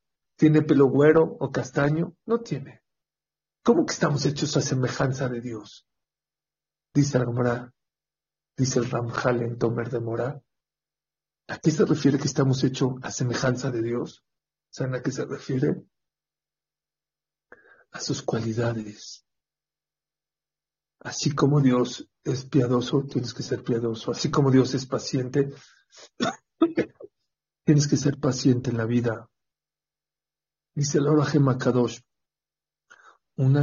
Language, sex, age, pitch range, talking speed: English, male, 50-69, 125-150 Hz, 120 wpm